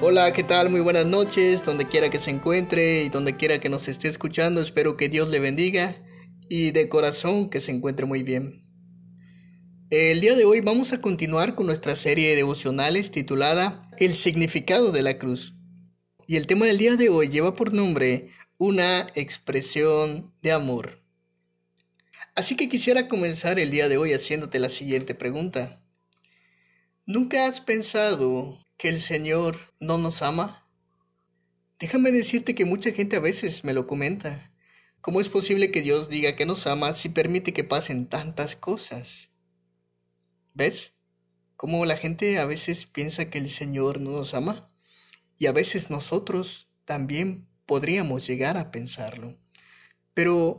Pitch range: 135-185 Hz